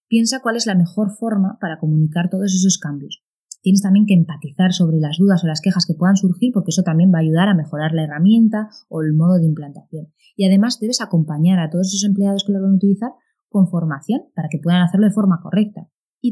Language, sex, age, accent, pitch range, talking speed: Spanish, female, 20-39, Spanish, 165-220 Hz, 230 wpm